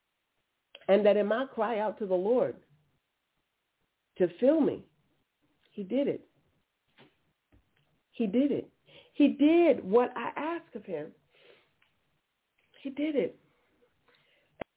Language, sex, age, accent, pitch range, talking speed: English, female, 40-59, American, 195-275 Hz, 120 wpm